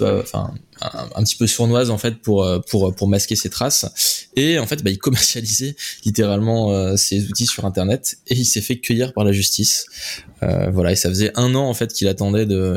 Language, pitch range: French, 100-120 Hz